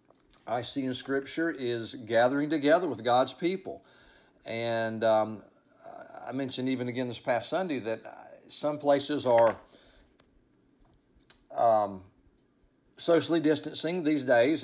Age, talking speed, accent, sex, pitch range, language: 50-69, 115 wpm, American, male, 110-145 Hz, English